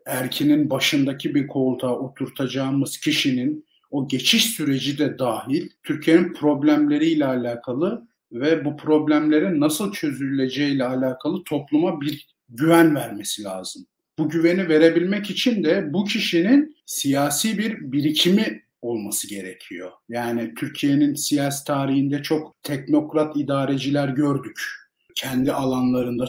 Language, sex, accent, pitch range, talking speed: Turkish, male, native, 125-160 Hz, 105 wpm